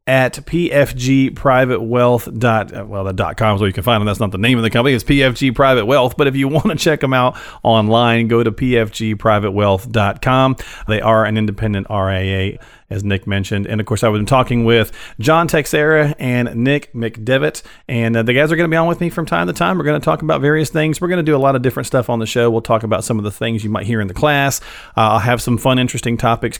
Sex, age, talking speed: male, 40-59, 240 wpm